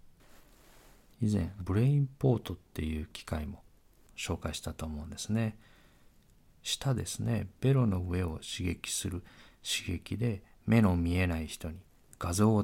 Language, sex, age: Japanese, male, 50-69